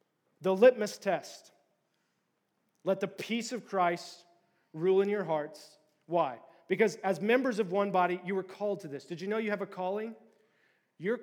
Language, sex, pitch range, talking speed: English, male, 175-220 Hz, 170 wpm